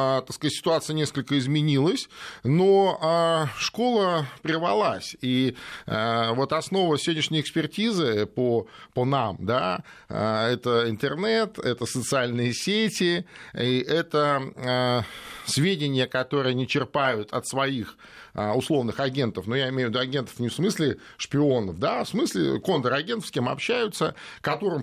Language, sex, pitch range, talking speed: Russian, male, 125-180 Hz, 120 wpm